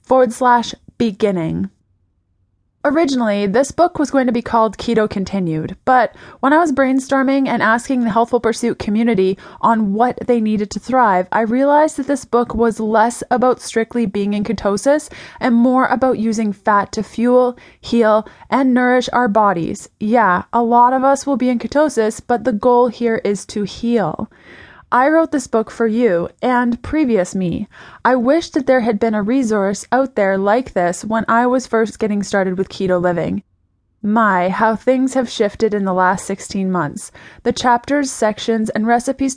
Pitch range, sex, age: 205-250 Hz, female, 20-39